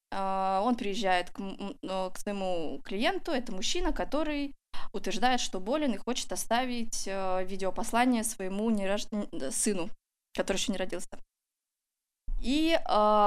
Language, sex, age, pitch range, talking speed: Russian, female, 20-39, 190-245 Hz, 105 wpm